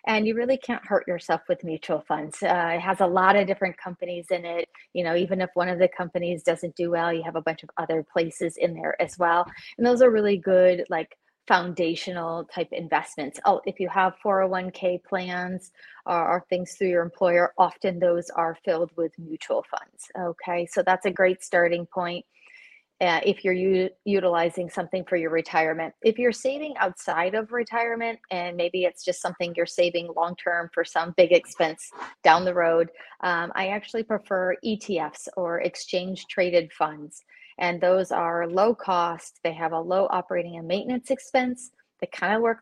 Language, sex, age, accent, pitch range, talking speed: English, female, 30-49, American, 170-195 Hz, 185 wpm